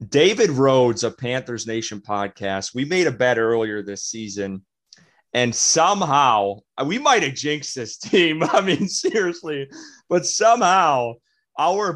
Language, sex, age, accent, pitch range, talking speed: English, male, 30-49, American, 105-135 Hz, 135 wpm